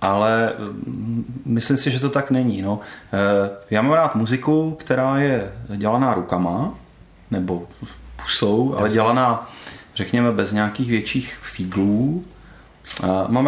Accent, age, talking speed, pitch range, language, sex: native, 30-49, 110 wpm, 105-130 Hz, Czech, male